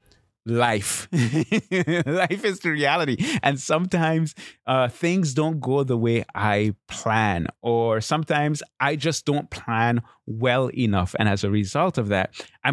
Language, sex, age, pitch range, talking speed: English, male, 30-49, 110-150 Hz, 140 wpm